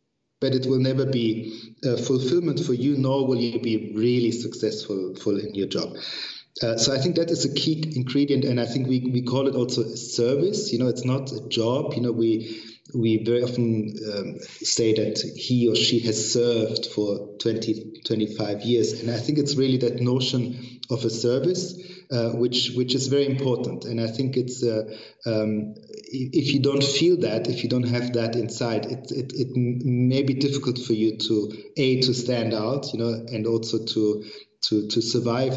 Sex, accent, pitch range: male, German, 115-130 Hz